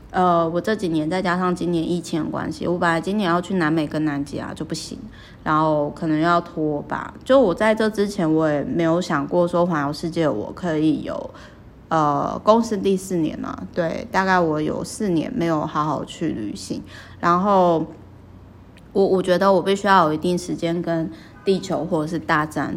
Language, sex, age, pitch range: Chinese, female, 20-39, 155-195 Hz